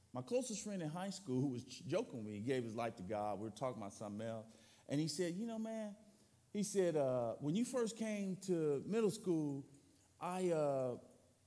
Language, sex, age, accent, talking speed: English, male, 40-59, American, 210 wpm